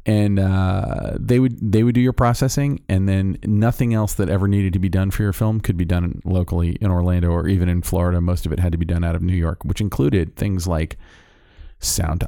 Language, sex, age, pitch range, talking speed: English, male, 40-59, 85-105 Hz, 235 wpm